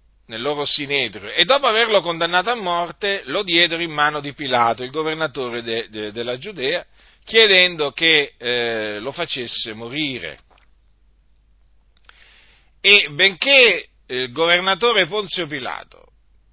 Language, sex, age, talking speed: Italian, male, 40-59, 120 wpm